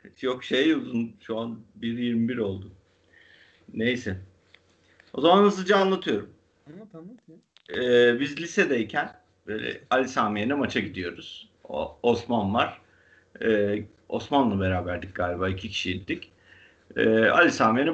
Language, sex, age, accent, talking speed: Turkish, male, 50-69, native, 110 wpm